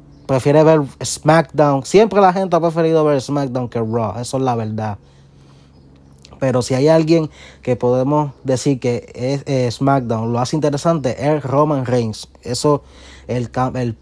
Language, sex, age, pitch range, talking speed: Spanish, male, 20-39, 120-145 Hz, 155 wpm